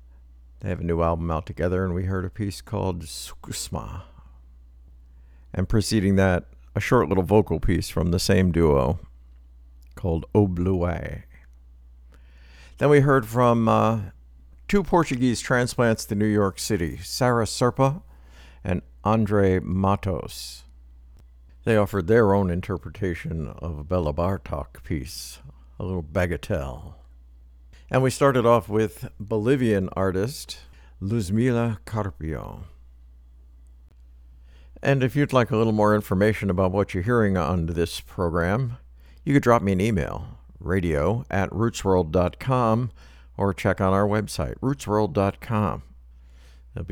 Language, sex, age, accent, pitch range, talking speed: English, male, 60-79, American, 65-105 Hz, 125 wpm